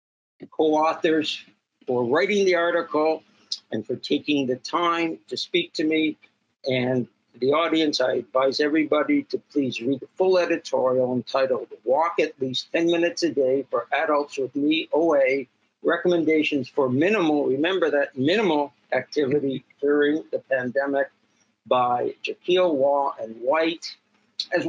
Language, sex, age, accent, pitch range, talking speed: English, male, 60-79, American, 130-170 Hz, 135 wpm